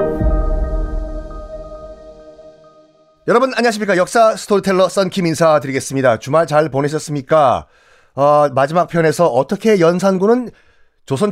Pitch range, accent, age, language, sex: 135-210 Hz, native, 40-59, Korean, male